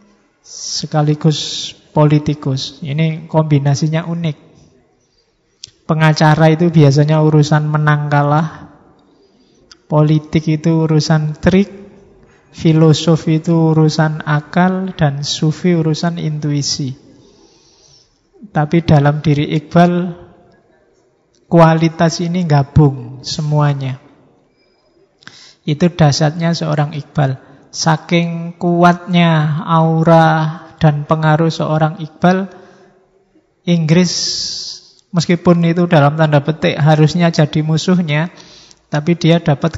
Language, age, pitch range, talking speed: Indonesian, 20-39, 150-165 Hz, 80 wpm